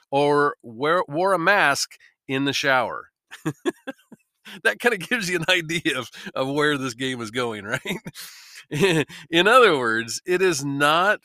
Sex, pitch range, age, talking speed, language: male, 125-170 Hz, 40-59, 150 wpm, English